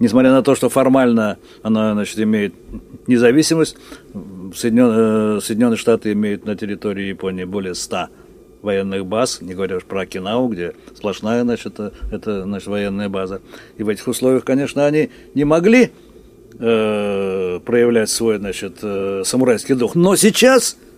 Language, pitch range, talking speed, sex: Russian, 110-150 Hz, 135 wpm, male